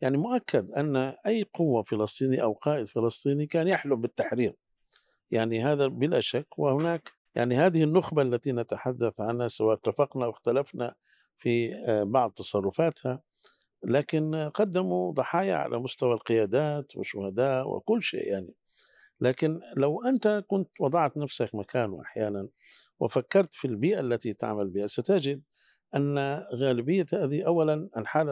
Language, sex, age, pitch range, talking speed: Arabic, male, 50-69, 115-155 Hz, 125 wpm